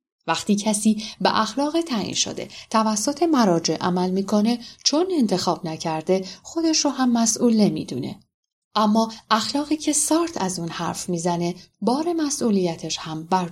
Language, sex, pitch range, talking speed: Persian, female, 185-240 Hz, 135 wpm